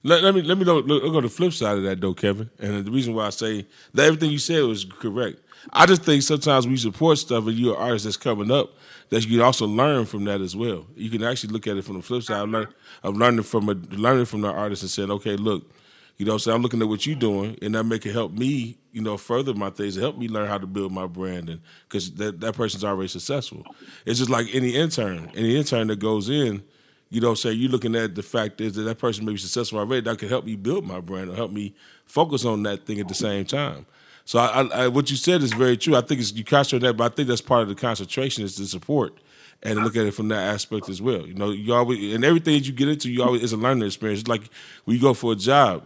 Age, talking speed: 20-39, 280 wpm